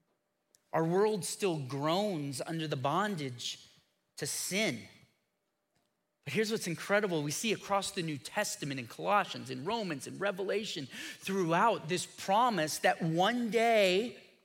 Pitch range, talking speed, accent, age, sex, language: 140-185 Hz, 130 wpm, American, 30-49, male, English